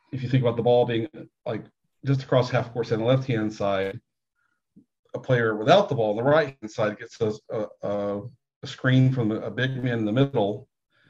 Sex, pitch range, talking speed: male, 110-130 Hz, 210 wpm